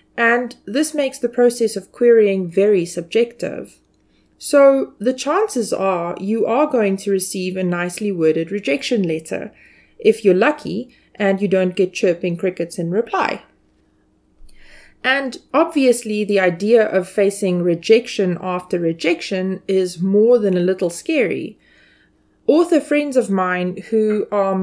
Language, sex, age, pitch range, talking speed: English, female, 30-49, 180-230 Hz, 135 wpm